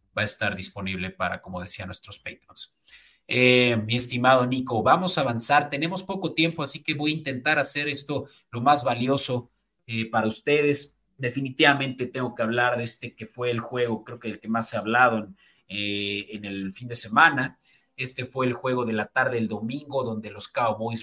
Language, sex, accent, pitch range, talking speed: Spanish, male, Mexican, 110-145 Hz, 190 wpm